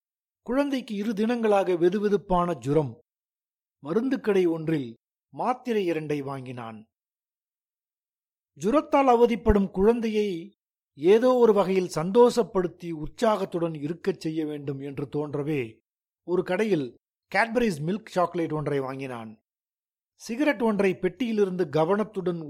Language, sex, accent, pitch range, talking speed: Tamil, male, native, 155-215 Hz, 95 wpm